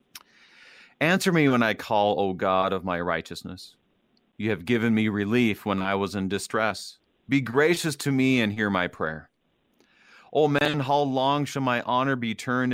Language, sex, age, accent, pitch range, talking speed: English, male, 30-49, American, 100-130 Hz, 175 wpm